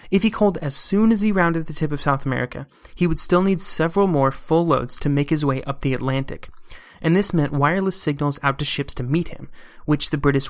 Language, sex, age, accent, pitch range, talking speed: English, male, 30-49, American, 135-170 Hz, 240 wpm